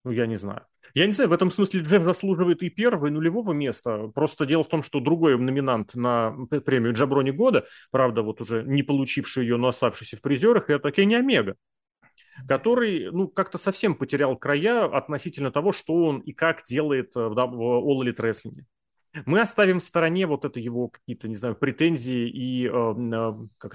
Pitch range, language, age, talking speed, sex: 125-160 Hz, Russian, 30-49, 175 wpm, male